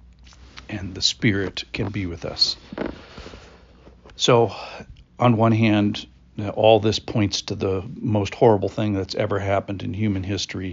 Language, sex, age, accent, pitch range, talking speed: English, male, 50-69, American, 90-100 Hz, 140 wpm